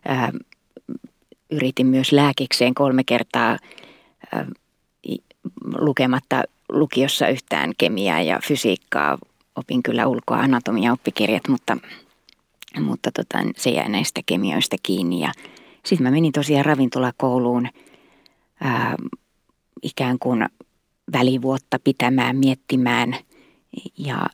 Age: 30-49